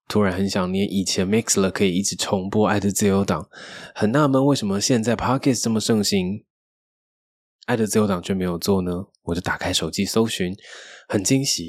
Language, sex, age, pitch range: Chinese, male, 20-39, 95-110 Hz